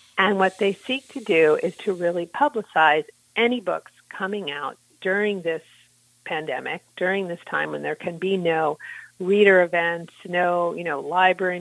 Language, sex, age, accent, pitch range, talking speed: English, female, 50-69, American, 170-215 Hz, 160 wpm